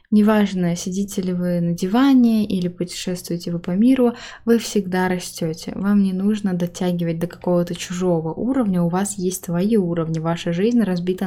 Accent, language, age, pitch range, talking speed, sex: native, Russian, 20-39, 175-215 Hz, 160 wpm, female